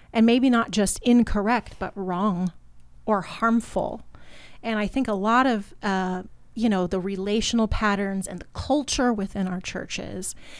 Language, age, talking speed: English, 30-49, 155 wpm